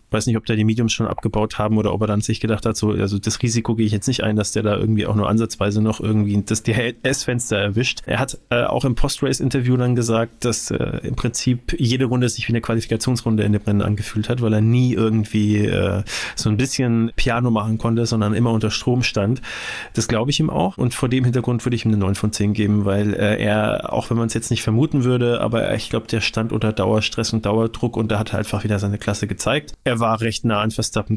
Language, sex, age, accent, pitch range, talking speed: German, male, 30-49, German, 110-125 Hz, 250 wpm